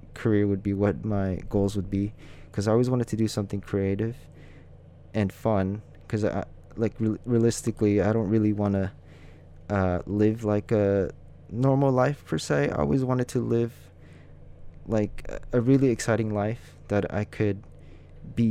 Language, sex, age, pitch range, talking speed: English, male, 20-39, 90-110 Hz, 160 wpm